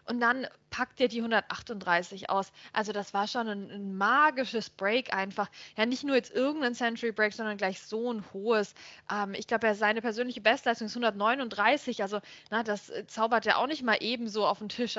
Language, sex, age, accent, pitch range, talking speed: German, female, 20-39, German, 220-290 Hz, 190 wpm